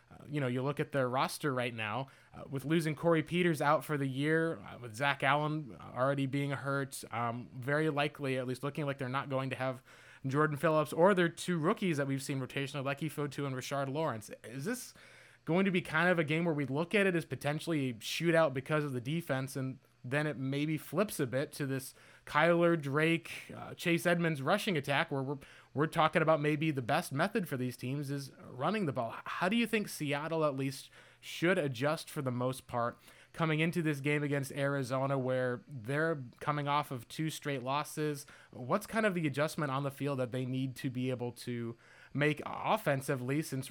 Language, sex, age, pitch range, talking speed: English, male, 20-39, 130-155 Hz, 210 wpm